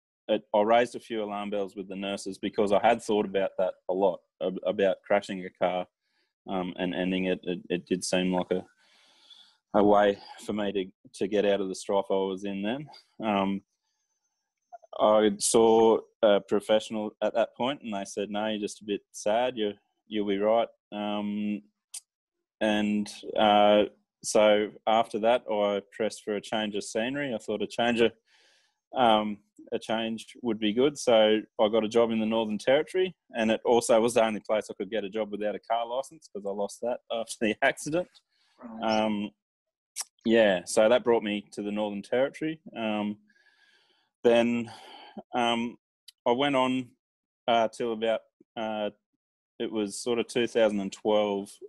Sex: male